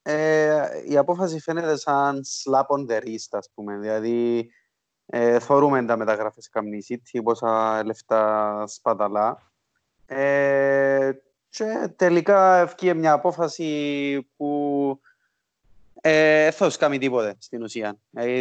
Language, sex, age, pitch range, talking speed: Greek, male, 20-39, 120-185 Hz, 105 wpm